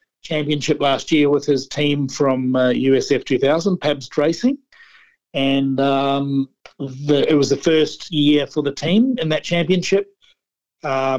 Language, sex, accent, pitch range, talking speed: English, male, Australian, 135-165 Hz, 145 wpm